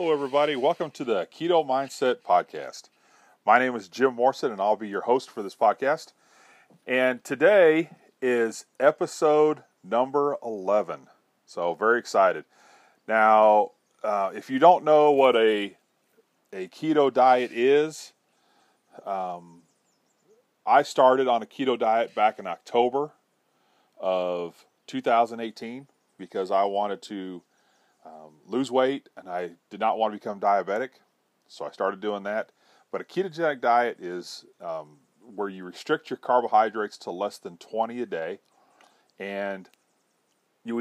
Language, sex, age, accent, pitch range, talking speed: English, male, 40-59, American, 100-140 Hz, 135 wpm